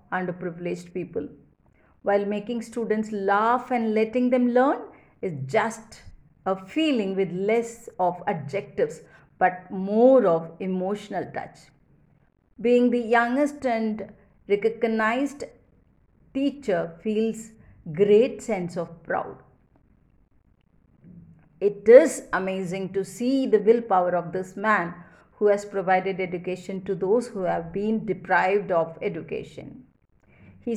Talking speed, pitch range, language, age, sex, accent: 110 wpm, 180-225 Hz, English, 50-69, female, Indian